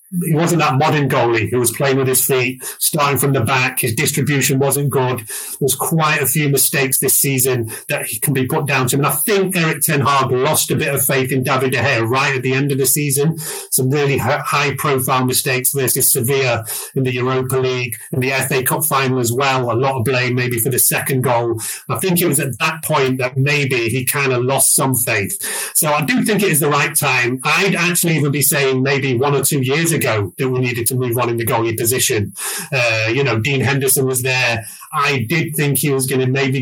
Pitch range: 125-145 Hz